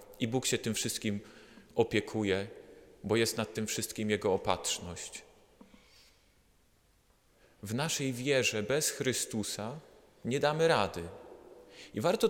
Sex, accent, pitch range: male, native, 95-125 Hz